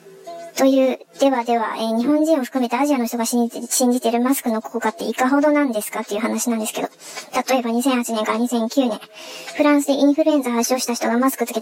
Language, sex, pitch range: Japanese, male, 230-275 Hz